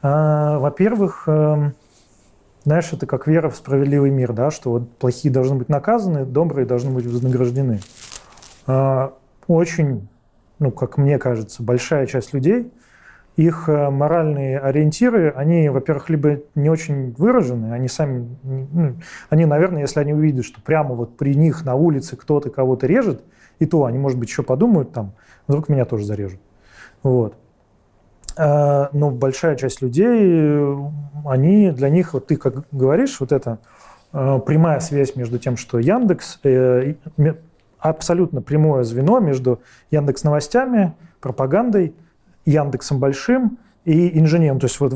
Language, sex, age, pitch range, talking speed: Russian, male, 20-39, 130-160 Hz, 130 wpm